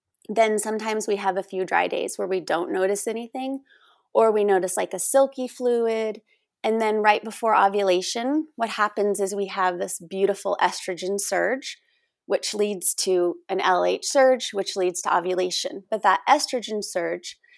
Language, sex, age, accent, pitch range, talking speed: English, female, 30-49, American, 190-265 Hz, 165 wpm